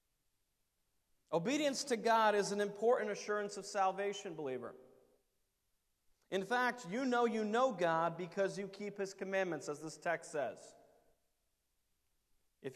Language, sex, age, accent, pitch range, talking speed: English, male, 40-59, American, 140-200 Hz, 125 wpm